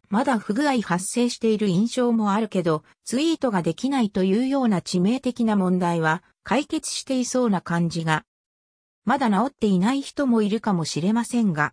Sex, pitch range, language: female, 175-255 Hz, Japanese